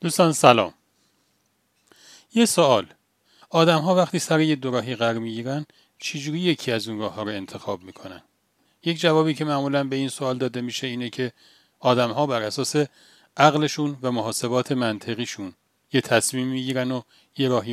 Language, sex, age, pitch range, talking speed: Persian, male, 40-59, 115-155 Hz, 160 wpm